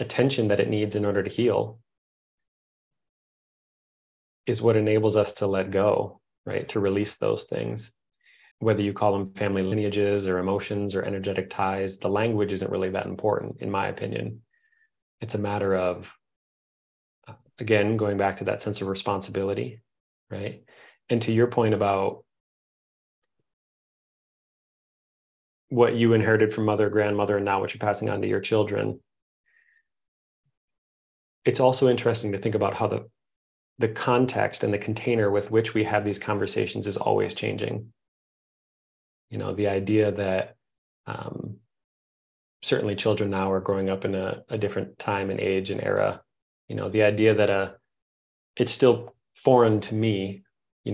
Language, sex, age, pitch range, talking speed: English, male, 30-49, 95-110 Hz, 150 wpm